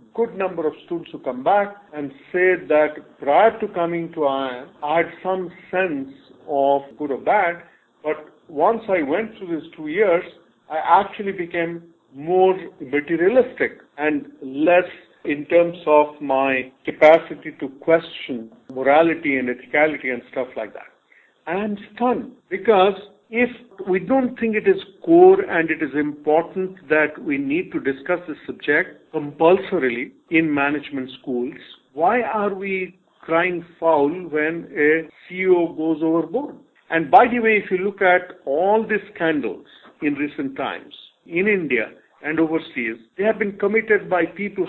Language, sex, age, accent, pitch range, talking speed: English, male, 50-69, Indian, 150-195 Hz, 150 wpm